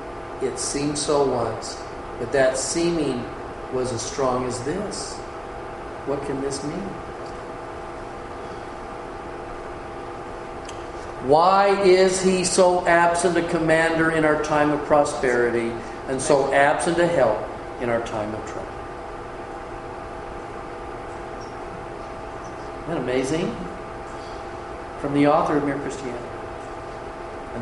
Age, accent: 50-69, American